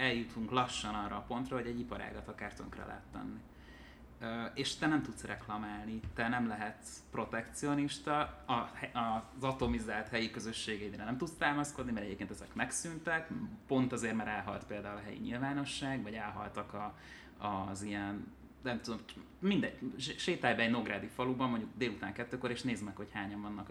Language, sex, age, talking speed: Hungarian, male, 20-39, 155 wpm